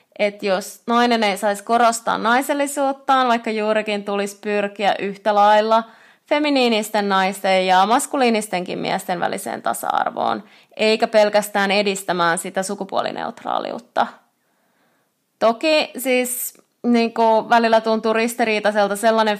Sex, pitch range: female, 195-255 Hz